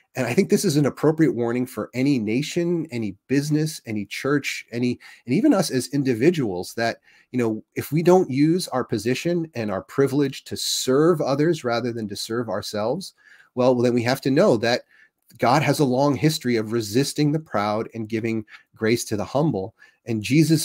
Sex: male